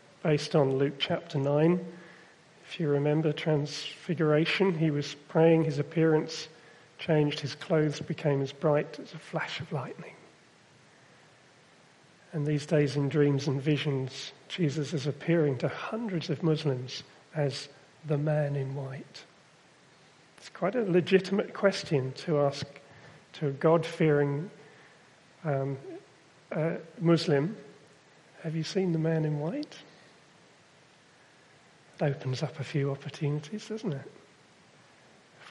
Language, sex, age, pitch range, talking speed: English, male, 40-59, 145-170 Hz, 120 wpm